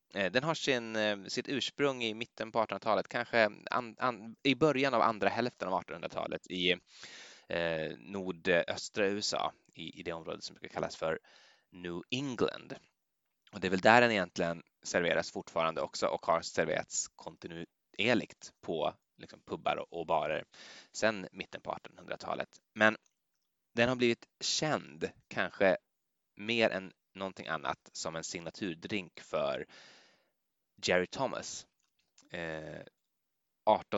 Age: 20-39